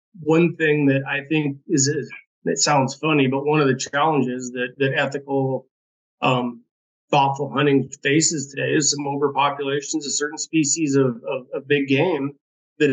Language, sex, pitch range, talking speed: English, male, 135-150 Hz, 160 wpm